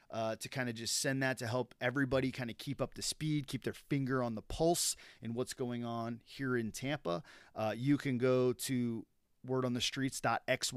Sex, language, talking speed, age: male, English, 215 wpm, 30-49